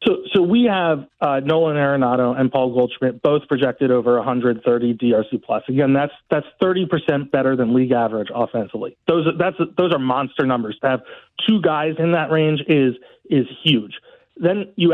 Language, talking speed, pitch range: English, 175 wpm, 125-160 Hz